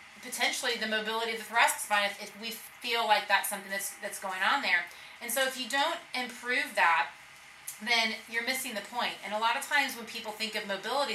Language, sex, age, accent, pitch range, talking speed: English, female, 30-49, American, 205-245 Hz, 220 wpm